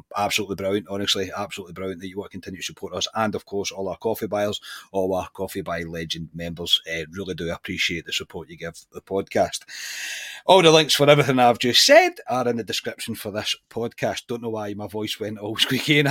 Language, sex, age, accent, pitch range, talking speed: English, male, 30-49, British, 95-115 Hz, 225 wpm